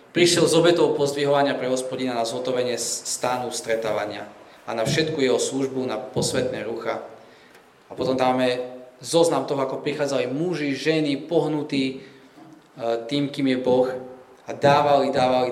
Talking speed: 135 wpm